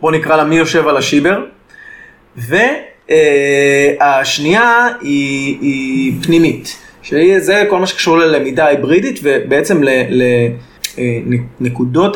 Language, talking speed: Hebrew, 100 wpm